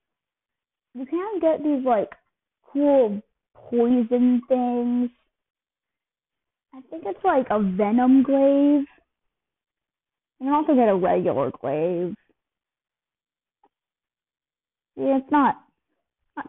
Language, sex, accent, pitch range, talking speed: English, female, American, 230-280 Hz, 95 wpm